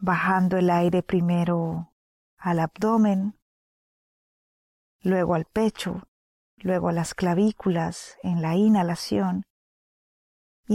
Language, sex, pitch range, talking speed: Spanish, female, 175-210 Hz, 95 wpm